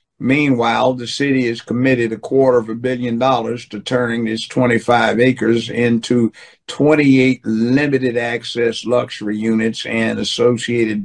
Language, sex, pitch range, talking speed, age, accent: English, male, 115-130 Hz, 130 wpm, 60-79, American